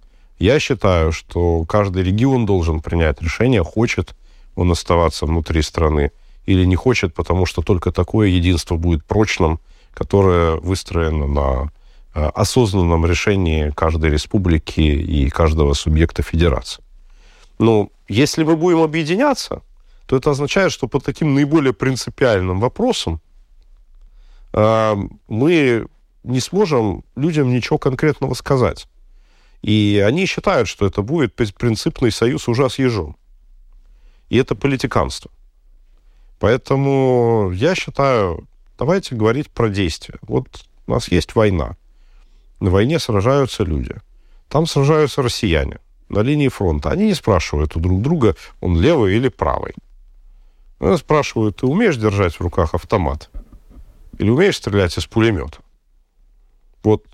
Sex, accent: male, native